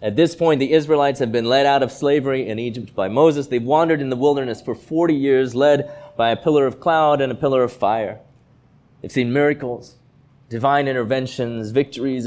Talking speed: 195 wpm